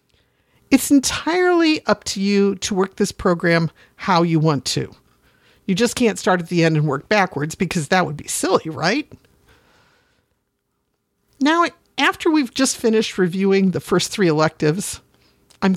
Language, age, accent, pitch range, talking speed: English, 50-69, American, 155-225 Hz, 150 wpm